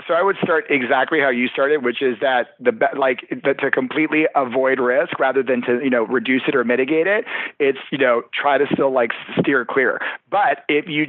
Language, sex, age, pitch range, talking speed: English, male, 40-59, 125-150 Hz, 215 wpm